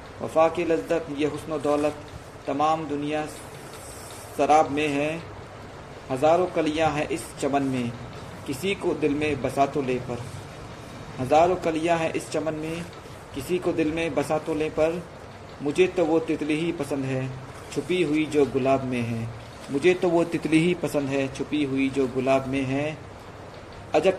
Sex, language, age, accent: male, Hindi, 50-69, native